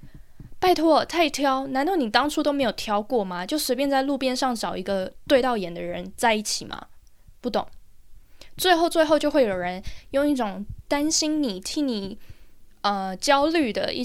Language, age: Chinese, 10-29